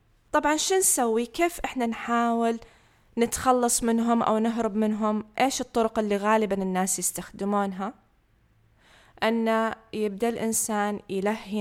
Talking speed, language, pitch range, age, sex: 110 wpm, Arabic, 200-280 Hz, 20-39, female